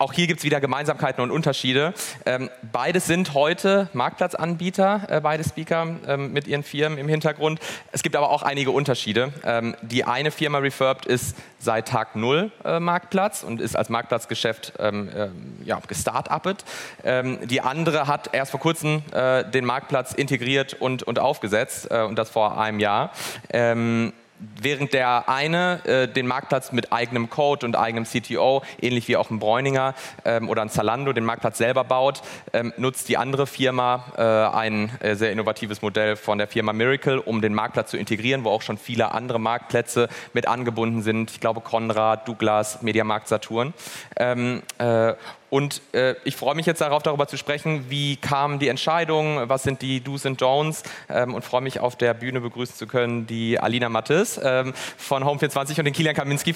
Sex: male